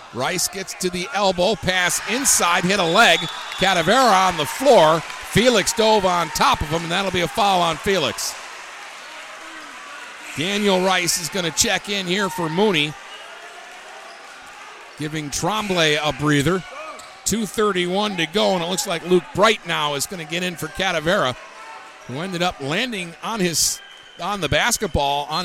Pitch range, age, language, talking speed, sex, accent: 155-200 Hz, 50-69, English, 160 wpm, male, American